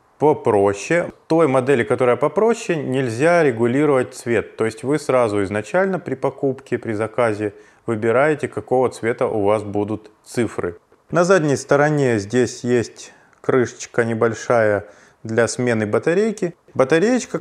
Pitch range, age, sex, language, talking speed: 110-150 Hz, 20-39, male, Russian, 120 wpm